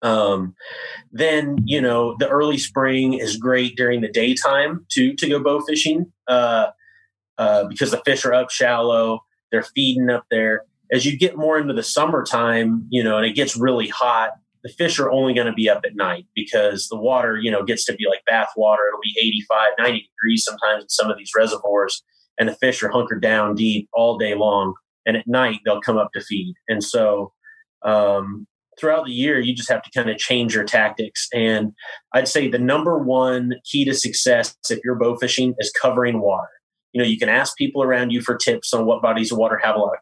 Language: English